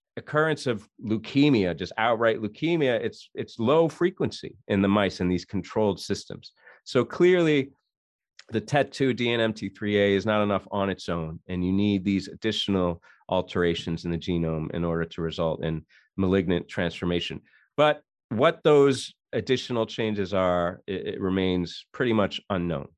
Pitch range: 95-130 Hz